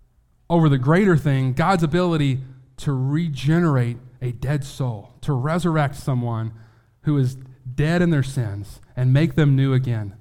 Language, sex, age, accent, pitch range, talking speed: English, male, 30-49, American, 130-155 Hz, 145 wpm